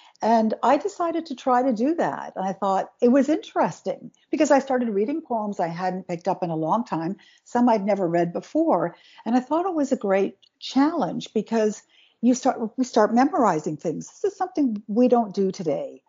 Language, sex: English, female